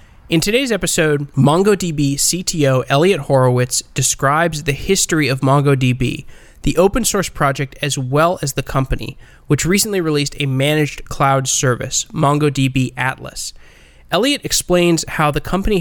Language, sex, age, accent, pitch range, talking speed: English, male, 20-39, American, 130-150 Hz, 135 wpm